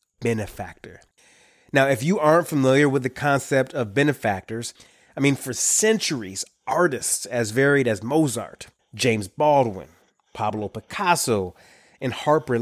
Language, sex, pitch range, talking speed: English, male, 110-140 Hz, 125 wpm